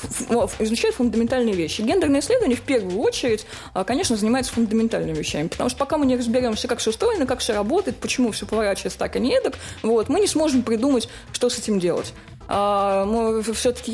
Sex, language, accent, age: female, Russian, native, 20-39